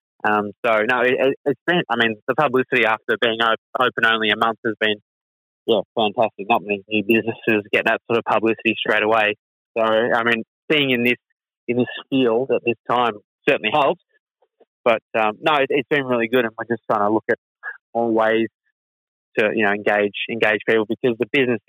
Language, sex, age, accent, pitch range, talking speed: English, male, 20-39, Australian, 110-125 Hz, 195 wpm